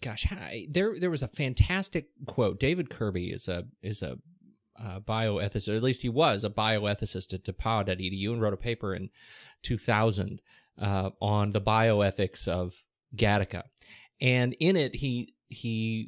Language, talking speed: English, 165 wpm